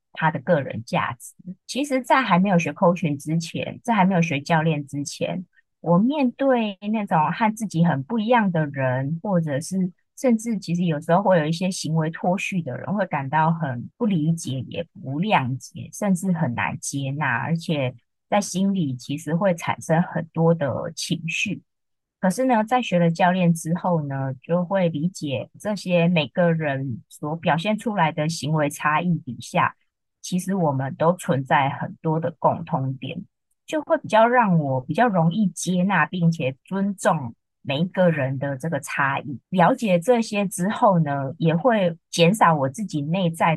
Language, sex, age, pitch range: Chinese, female, 20-39, 150-190 Hz